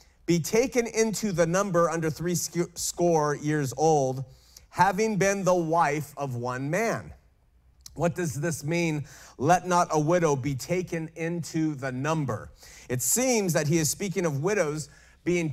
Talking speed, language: 150 wpm, Swedish